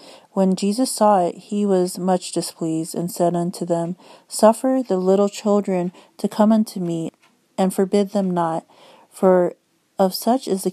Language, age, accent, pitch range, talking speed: English, 40-59, American, 175-205 Hz, 160 wpm